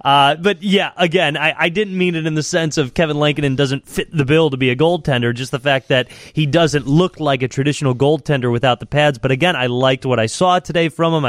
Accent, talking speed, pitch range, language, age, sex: American, 250 wpm, 125-155 Hz, English, 30-49, male